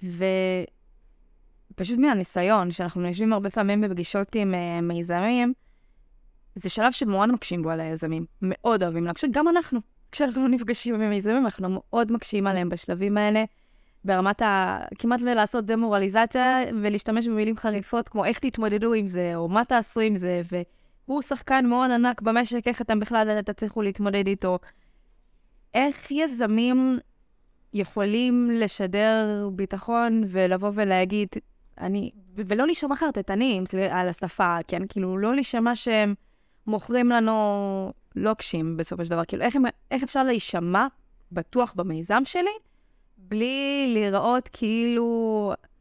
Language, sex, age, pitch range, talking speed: Hebrew, female, 20-39, 195-250 Hz, 130 wpm